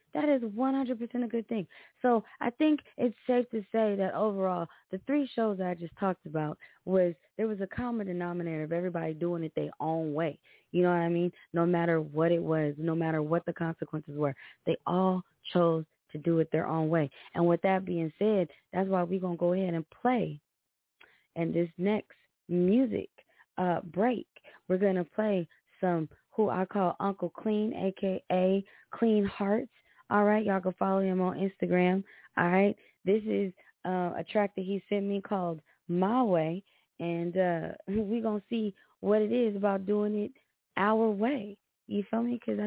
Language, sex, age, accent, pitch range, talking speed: English, female, 20-39, American, 170-215 Hz, 185 wpm